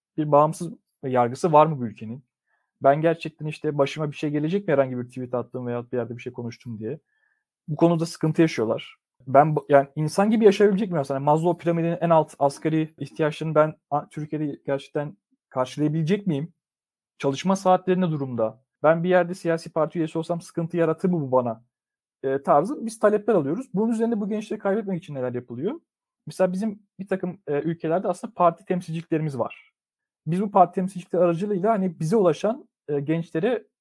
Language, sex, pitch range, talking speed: Turkish, male, 145-190 Hz, 170 wpm